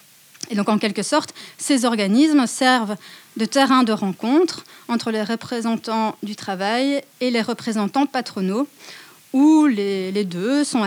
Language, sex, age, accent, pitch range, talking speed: French, female, 30-49, French, 200-255 Hz, 145 wpm